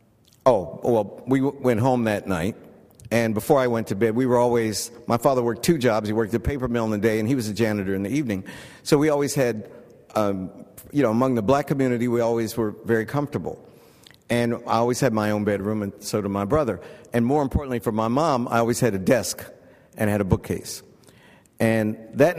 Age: 60-79